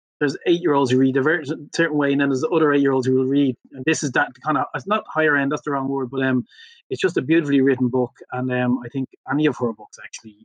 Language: English